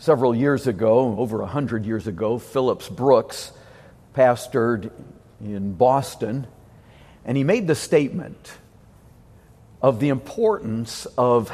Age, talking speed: 50-69, 115 wpm